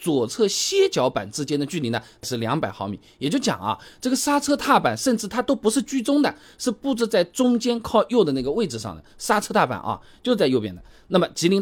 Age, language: 20-39, Chinese